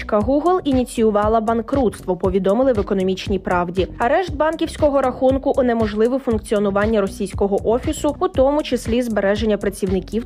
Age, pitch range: 20-39, 200-255 Hz